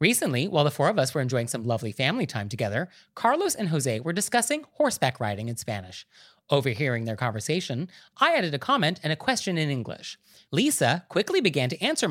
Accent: American